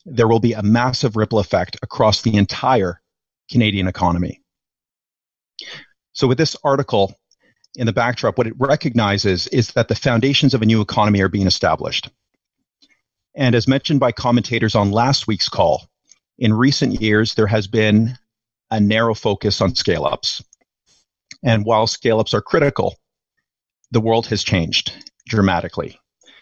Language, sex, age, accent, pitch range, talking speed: English, male, 40-59, American, 100-120 Hz, 145 wpm